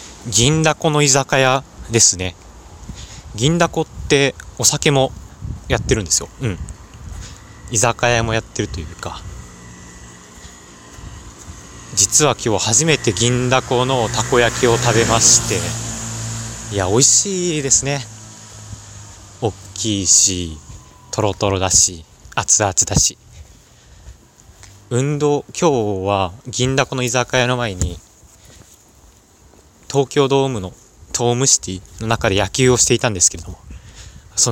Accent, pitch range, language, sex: native, 95-125 Hz, Japanese, male